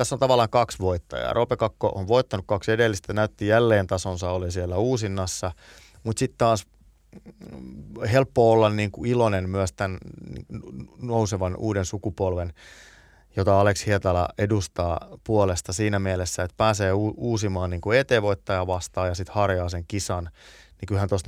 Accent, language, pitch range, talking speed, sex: native, Finnish, 90-110 Hz, 140 wpm, male